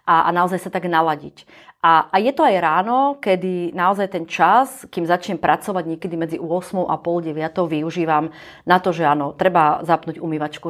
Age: 30-49